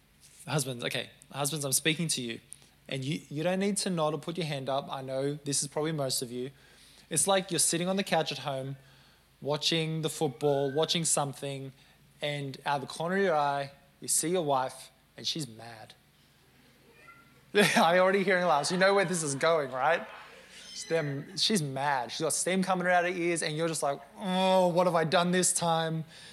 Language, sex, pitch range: English, male, 135-175 Hz